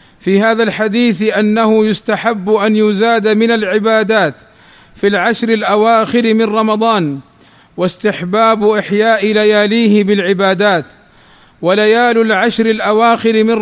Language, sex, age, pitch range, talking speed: Arabic, male, 40-59, 205-230 Hz, 95 wpm